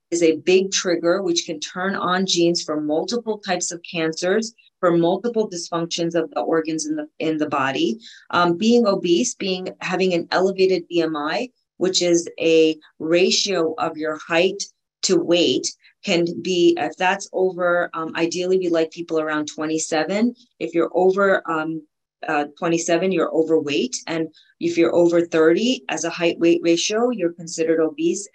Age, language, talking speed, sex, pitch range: 30-49, English, 155 wpm, female, 160-185 Hz